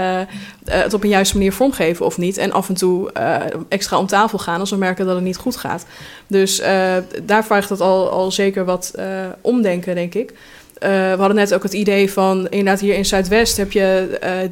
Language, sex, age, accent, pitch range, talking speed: Dutch, female, 20-39, Dutch, 185-215 Hz, 215 wpm